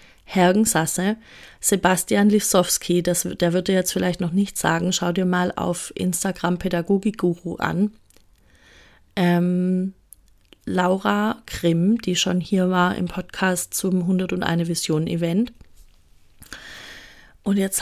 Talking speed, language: 110 wpm, German